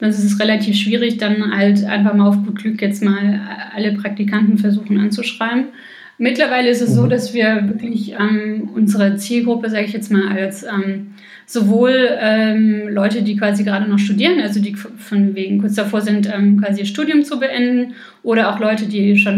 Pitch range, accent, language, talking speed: 205-235 Hz, German, German, 185 wpm